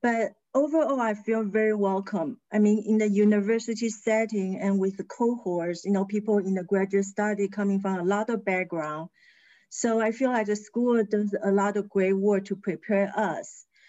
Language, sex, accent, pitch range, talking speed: English, female, Chinese, 190-225 Hz, 190 wpm